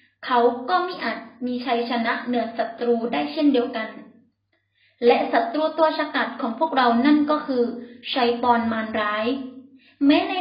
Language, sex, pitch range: Thai, female, 240-290 Hz